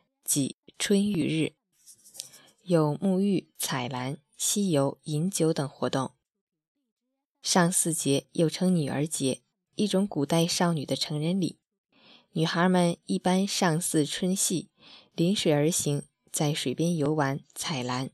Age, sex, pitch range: 20-39, female, 145-195 Hz